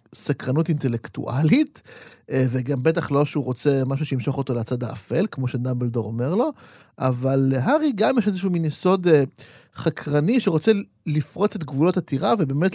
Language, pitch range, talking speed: Hebrew, 130-180 Hz, 140 wpm